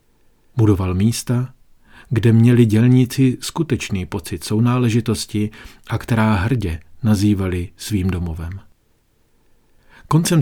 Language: Czech